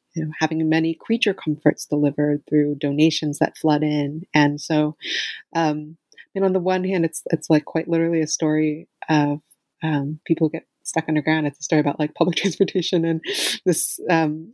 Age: 30-49